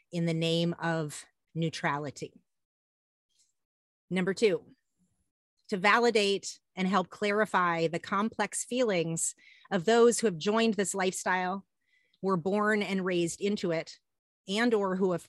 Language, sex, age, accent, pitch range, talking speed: English, female, 30-49, American, 170-215 Hz, 125 wpm